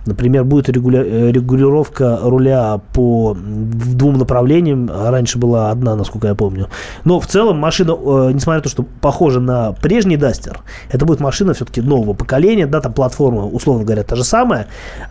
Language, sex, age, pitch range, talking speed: Russian, male, 20-39, 115-150 Hz, 155 wpm